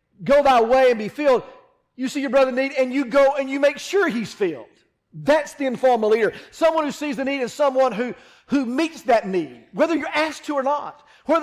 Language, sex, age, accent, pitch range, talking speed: English, male, 40-59, American, 220-285 Hz, 230 wpm